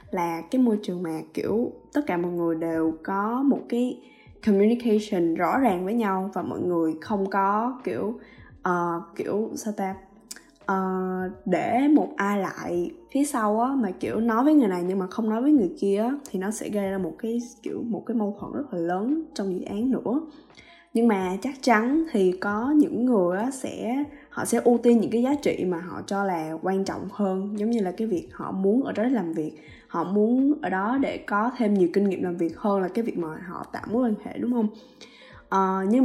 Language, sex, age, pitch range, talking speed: Vietnamese, female, 10-29, 185-240 Hz, 220 wpm